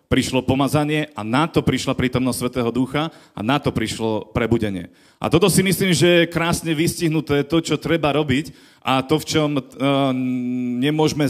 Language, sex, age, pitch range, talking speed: Slovak, male, 40-59, 130-155 Hz, 165 wpm